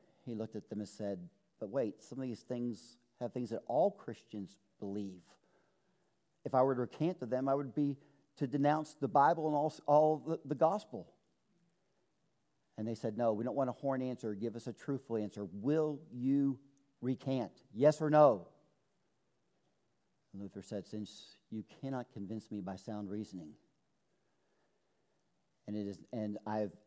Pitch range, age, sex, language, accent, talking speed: 105-140 Hz, 50-69, male, English, American, 165 wpm